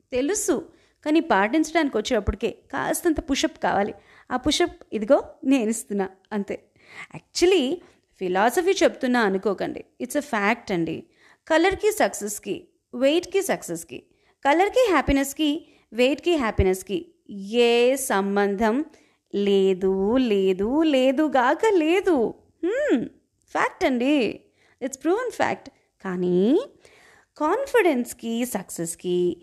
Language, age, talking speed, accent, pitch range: Telugu, 30-49, 90 wpm, native, 225-350 Hz